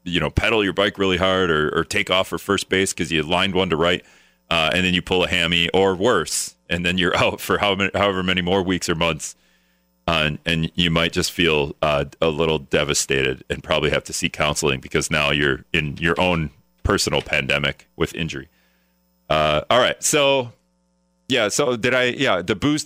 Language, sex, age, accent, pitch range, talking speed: English, male, 30-49, American, 80-110 Hz, 210 wpm